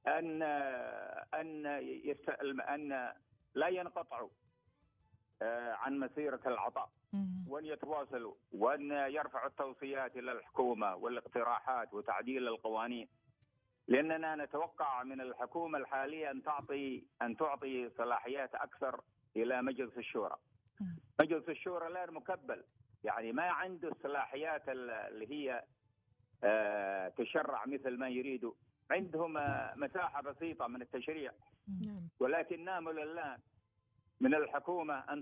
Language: Arabic